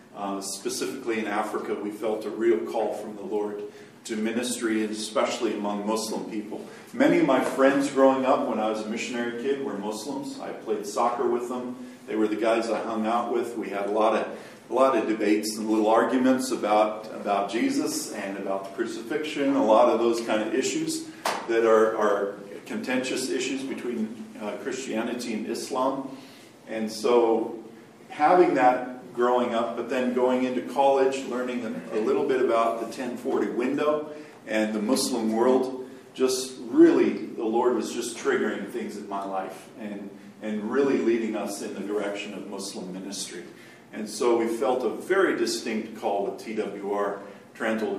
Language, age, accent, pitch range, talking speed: English, 50-69, American, 105-130 Hz, 175 wpm